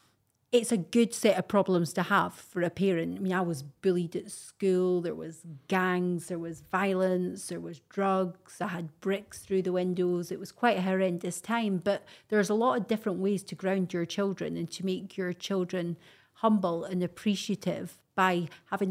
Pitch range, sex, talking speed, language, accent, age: 175-195 Hz, female, 190 wpm, English, British, 30-49